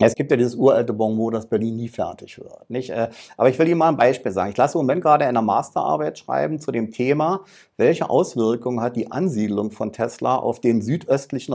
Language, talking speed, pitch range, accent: German, 220 wpm, 120-155 Hz, German